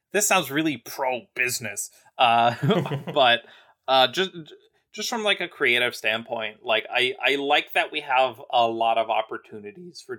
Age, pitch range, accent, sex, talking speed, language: 30-49, 115-185 Hz, American, male, 155 wpm, English